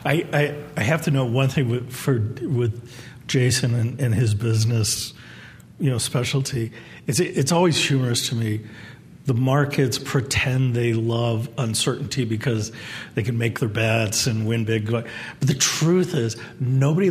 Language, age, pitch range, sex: English, 50-69, 115-145 Hz, male